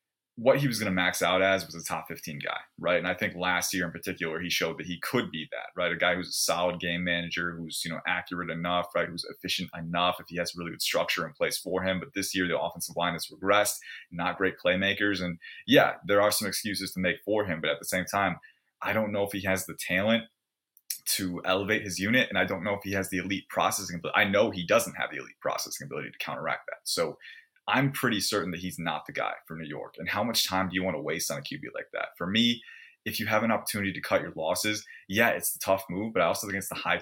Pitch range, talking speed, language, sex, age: 90-100 Hz, 265 wpm, English, male, 20-39